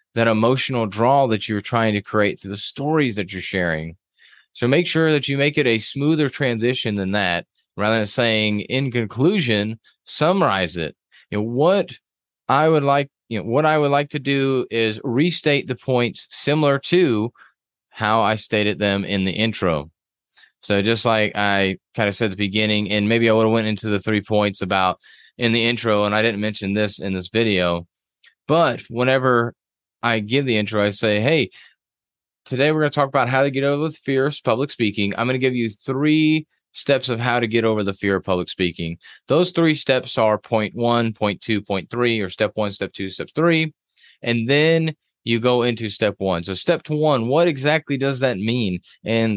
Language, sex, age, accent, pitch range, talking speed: English, male, 30-49, American, 105-135 Hz, 200 wpm